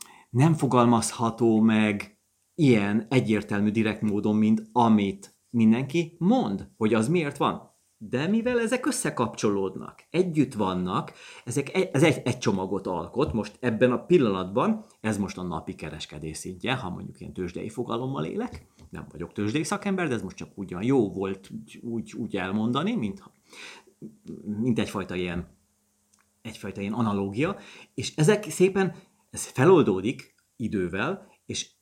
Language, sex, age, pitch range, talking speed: Hungarian, male, 30-49, 105-160 Hz, 135 wpm